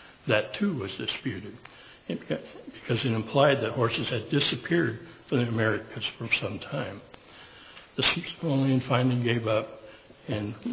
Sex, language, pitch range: male, English, 110-130 Hz